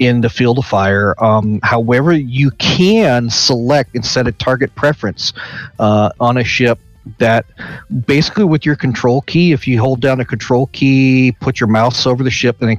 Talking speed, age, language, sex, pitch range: 190 wpm, 40-59, English, male, 115-135 Hz